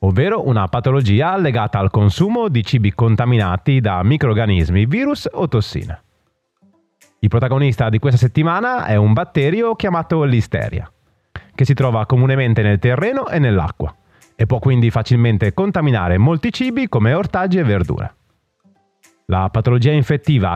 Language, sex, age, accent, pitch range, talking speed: Italian, male, 30-49, native, 105-155 Hz, 135 wpm